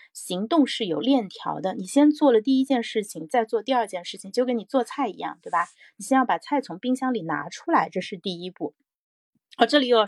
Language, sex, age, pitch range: Chinese, female, 30-49, 190-250 Hz